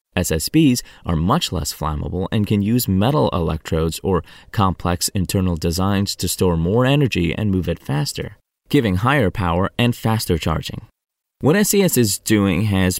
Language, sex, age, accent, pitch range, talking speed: English, male, 20-39, American, 85-110 Hz, 150 wpm